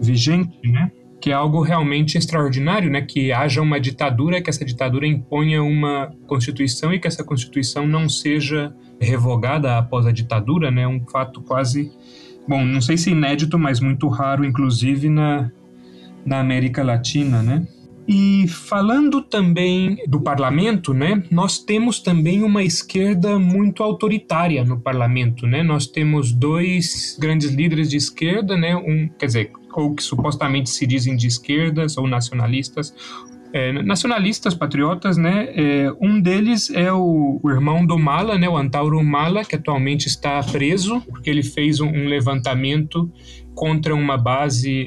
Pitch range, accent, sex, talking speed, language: 135-165 Hz, Brazilian, male, 150 wpm, Portuguese